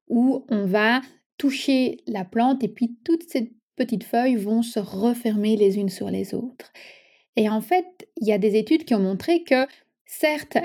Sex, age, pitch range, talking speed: female, 30-49, 200-245 Hz, 185 wpm